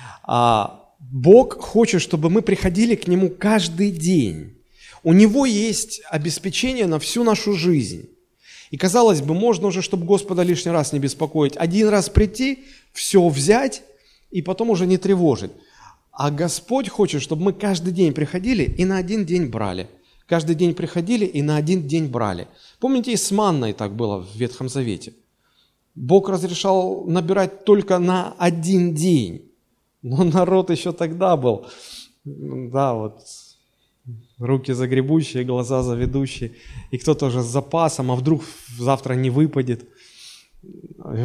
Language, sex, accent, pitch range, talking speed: Russian, male, native, 130-195 Hz, 140 wpm